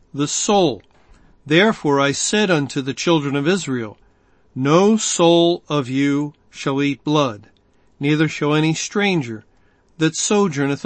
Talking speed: 125 wpm